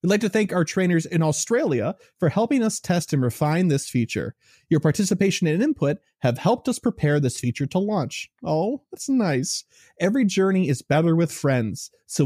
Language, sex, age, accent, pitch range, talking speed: English, male, 30-49, American, 130-185 Hz, 185 wpm